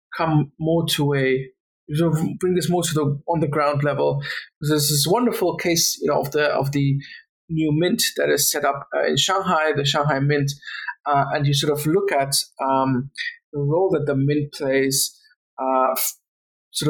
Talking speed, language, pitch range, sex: 190 wpm, English, 140-165 Hz, male